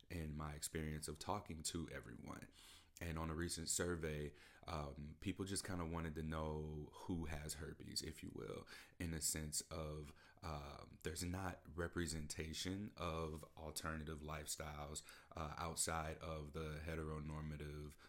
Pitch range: 75-85 Hz